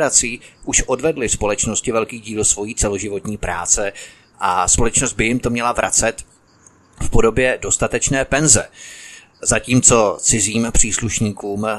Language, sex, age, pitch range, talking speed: Czech, male, 30-49, 105-120 Hz, 110 wpm